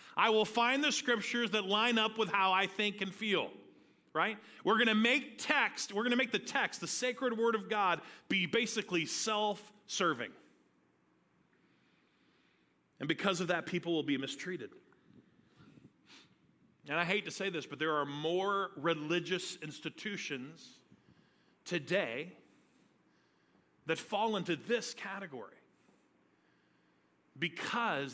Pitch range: 150-210 Hz